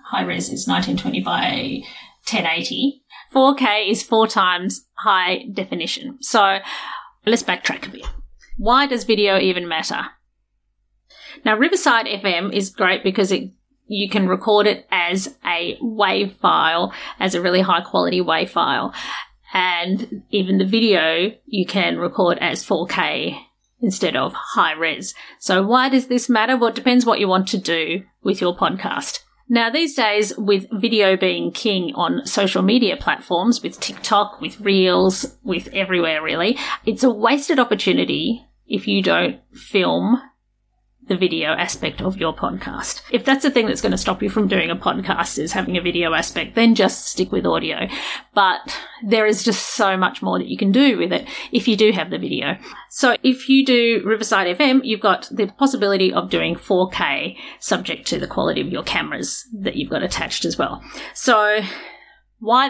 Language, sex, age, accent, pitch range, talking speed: English, female, 30-49, Australian, 190-255 Hz, 165 wpm